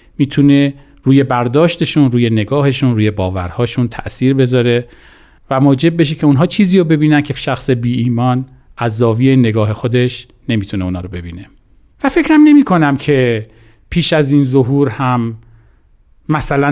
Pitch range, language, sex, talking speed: 120-165 Hz, Persian, male, 140 wpm